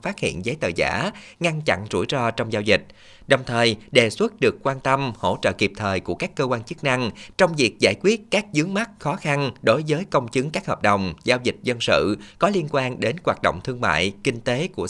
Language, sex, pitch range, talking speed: Vietnamese, male, 115-150 Hz, 240 wpm